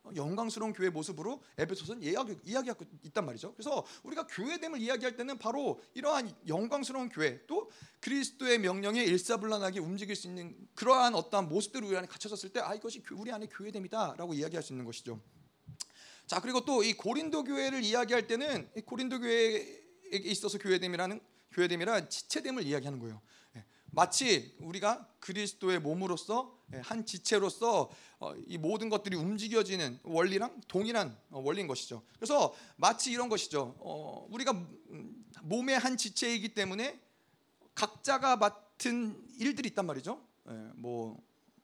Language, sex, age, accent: Korean, male, 30-49, native